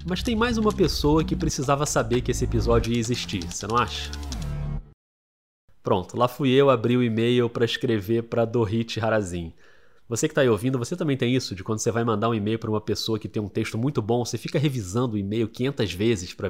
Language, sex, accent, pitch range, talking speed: Portuguese, male, Brazilian, 110-155 Hz, 220 wpm